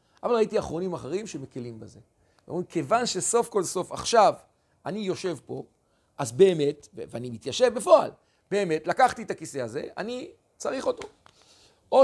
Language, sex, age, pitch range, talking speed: Hebrew, male, 50-69, 145-230 Hz, 145 wpm